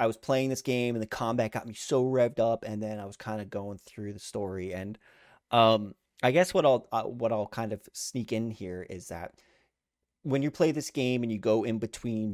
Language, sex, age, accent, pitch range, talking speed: English, male, 30-49, American, 100-125 Hz, 240 wpm